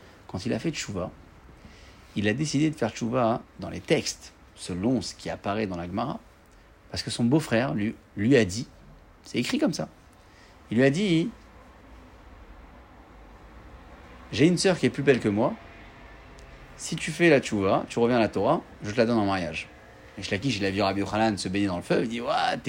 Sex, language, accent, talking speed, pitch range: male, French, French, 205 wpm, 85-115 Hz